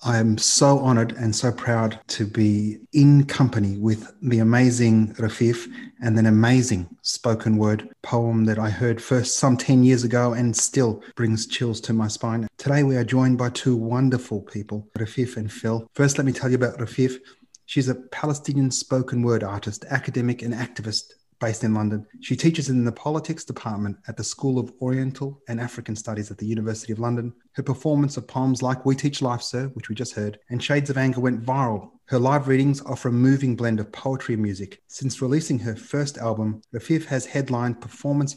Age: 30-49